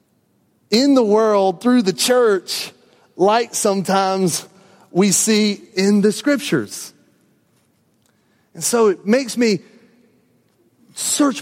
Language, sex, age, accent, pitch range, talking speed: English, male, 30-49, American, 155-210 Hz, 100 wpm